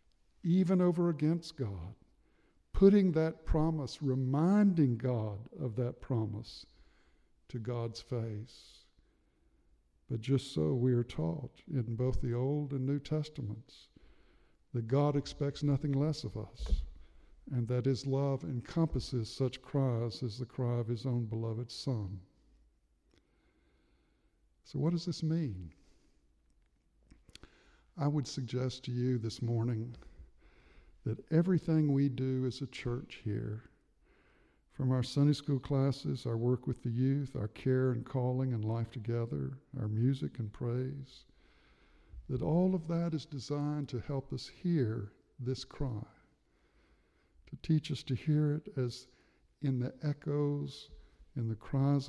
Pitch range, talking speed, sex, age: 115-145 Hz, 135 wpm, male, 60-79